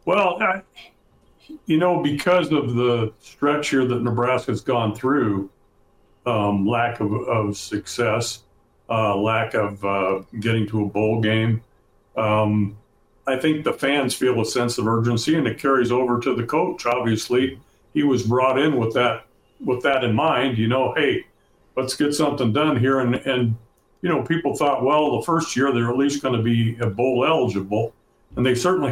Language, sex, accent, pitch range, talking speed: English, male, American, 110-140 Hz, 175 wpm